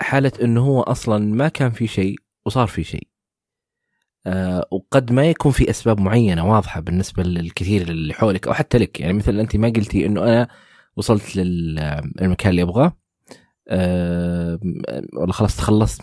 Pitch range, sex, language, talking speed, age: 90-115 Hz, male, Arabic, 150 wpm, 20-39